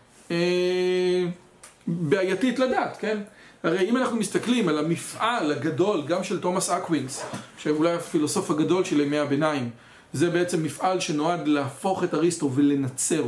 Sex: male